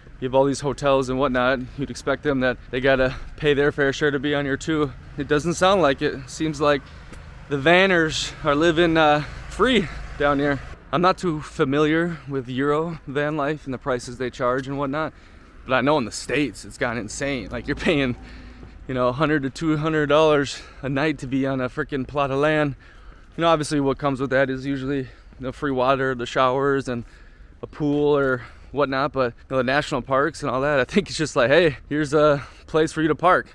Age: 20-39